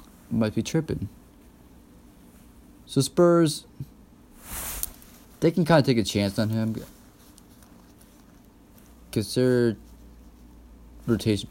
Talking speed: 90 wpm